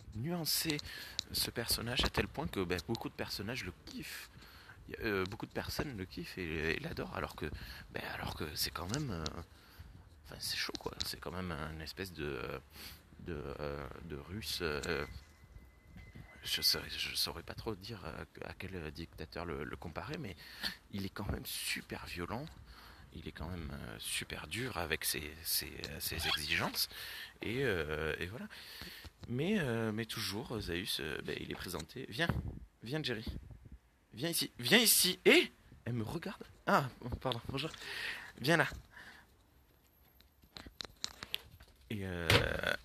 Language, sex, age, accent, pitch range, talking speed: French, male, 30-49, French, 75-105 Hz, 150 wpm